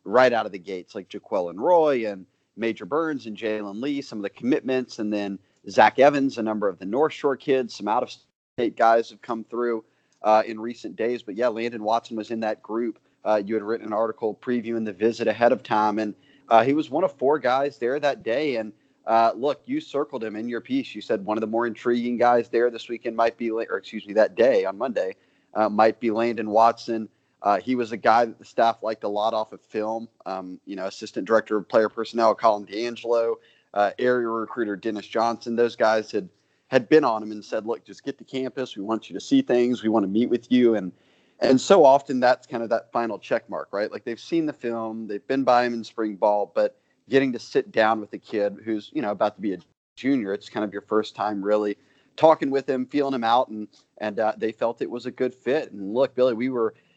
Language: English